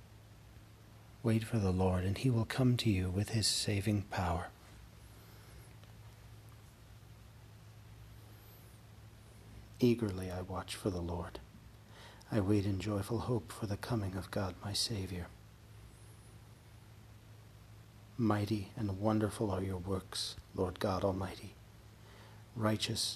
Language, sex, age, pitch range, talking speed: English, male, 40-59, 100-110 Hz, 110 wpm